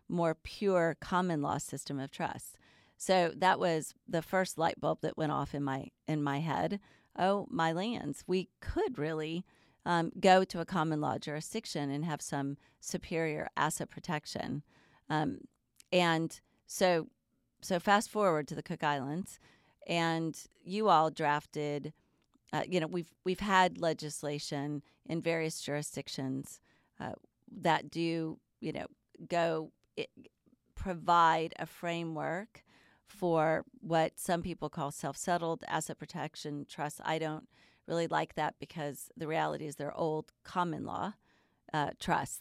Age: 40-59